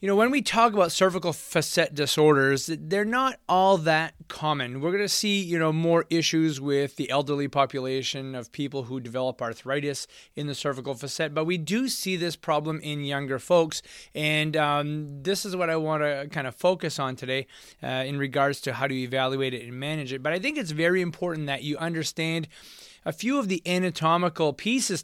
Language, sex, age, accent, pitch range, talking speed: English, male, 20-39, American, 140-180 Hz, 200 wpm